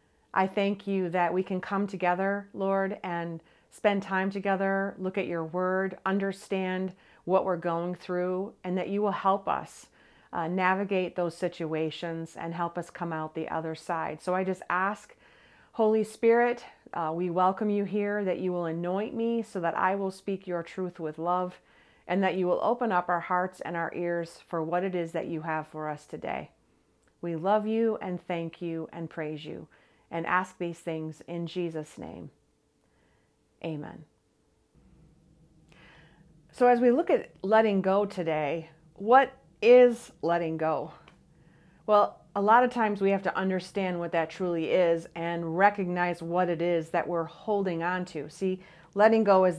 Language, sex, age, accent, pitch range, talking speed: English, female, 40-59, American, 165-195 Hz, 170 wpm